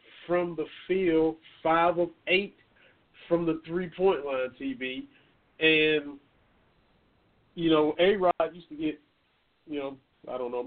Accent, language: American, English